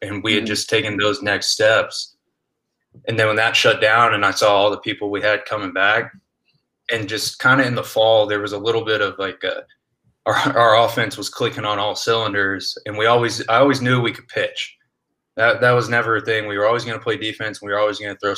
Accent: American